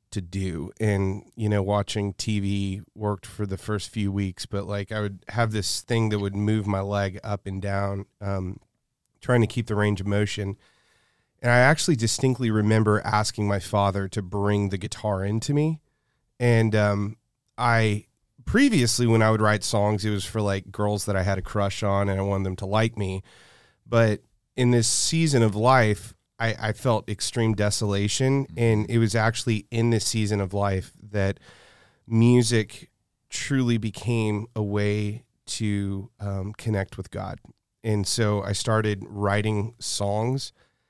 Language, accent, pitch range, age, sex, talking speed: English, American, 100-115 Hz, 30-49, male, 165 wpm